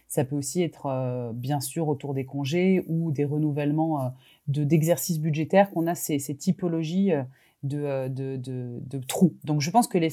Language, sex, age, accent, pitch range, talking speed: French, female, 30-49, French, 145-180 Hz, 190 wpm